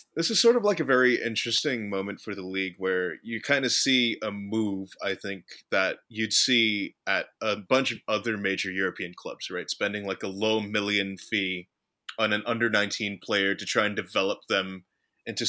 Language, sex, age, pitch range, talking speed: English, male, 20-39, 100-120 Hz, 190 wpm